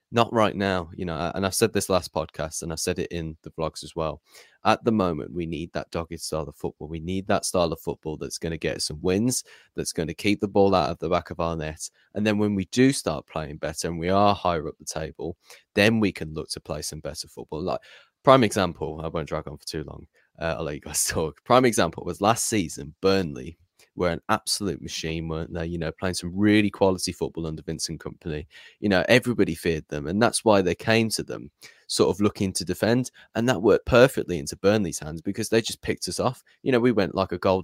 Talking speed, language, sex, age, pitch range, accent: 245 wpm, English, male, 20-39, 80-100 Hz, British